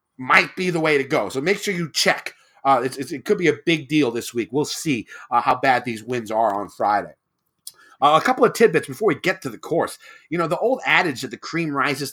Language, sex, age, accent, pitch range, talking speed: English, male, 30-49, American, 130-180 Hz, 250 wpm